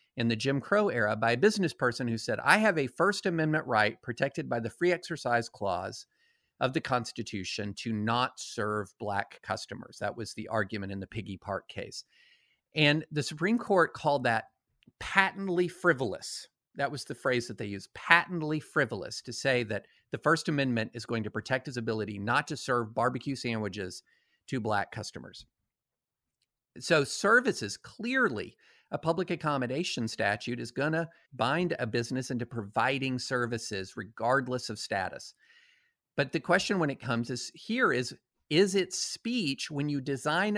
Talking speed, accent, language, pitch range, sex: 165 wpm, American, English, 115-175 Hz, male